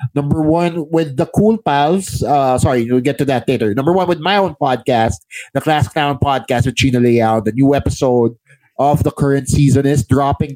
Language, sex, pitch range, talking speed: English, male, 135-170 Hz, 200 wpm